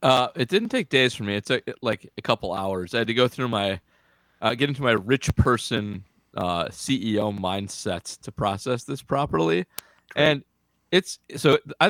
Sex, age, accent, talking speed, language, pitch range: male, 30-49, American, 180 wpm, English, 100-135 Hz